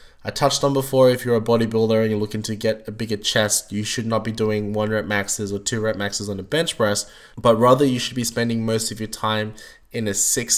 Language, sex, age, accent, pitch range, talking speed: English, male, 20-39, Australian, 105-120 Hz, 255 wpm